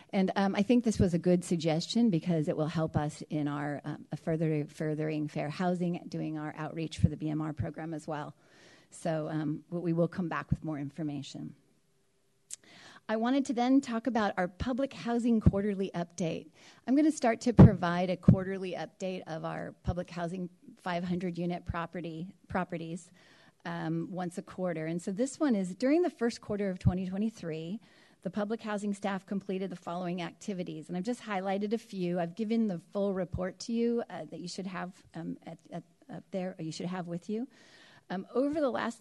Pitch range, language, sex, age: 165-205 Hz, English, female, 40-59